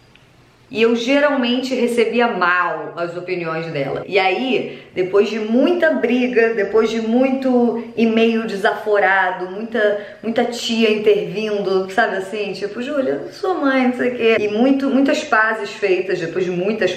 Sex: female